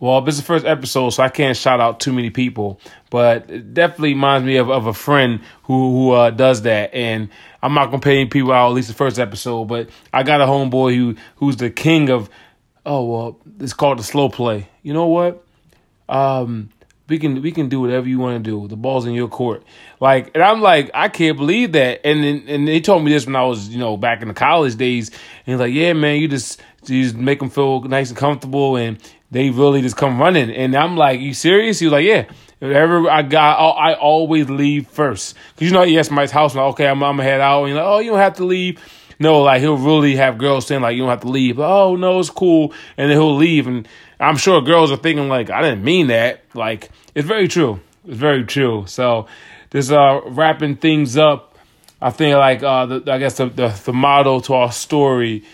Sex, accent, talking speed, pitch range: male, American, 240 wpm, 125-150 Hz